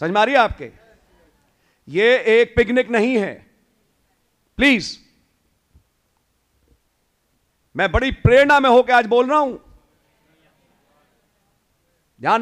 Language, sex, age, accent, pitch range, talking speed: English, male, 50-69, Indian, 160-230 Hz, 95 wpm